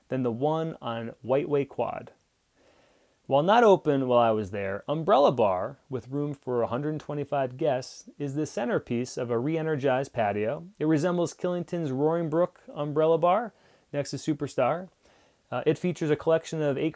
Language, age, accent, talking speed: English, 30-49, American, 160 wpm